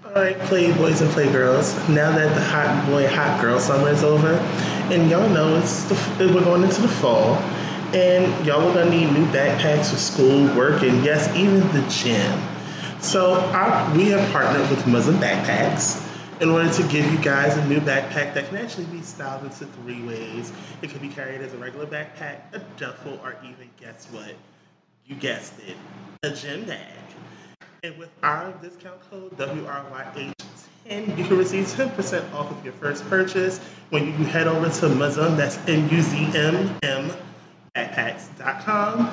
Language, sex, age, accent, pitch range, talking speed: English, male, 20-39, American, 140-185 Hz, 160 wpm